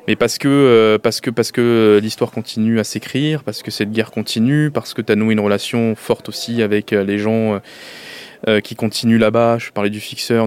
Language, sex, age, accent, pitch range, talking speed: French, male, 20-39, French, 105-125 Hz, 200 wpm